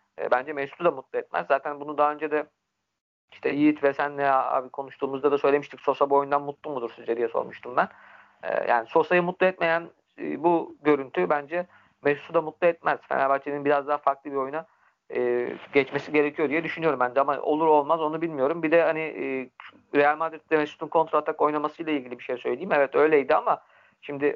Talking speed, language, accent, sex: 175 wpm, Turkish, native, male